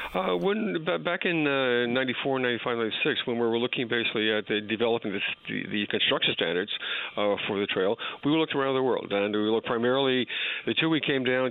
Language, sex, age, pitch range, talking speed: English, male, 50-69, 105-125 Hz, 210 wpm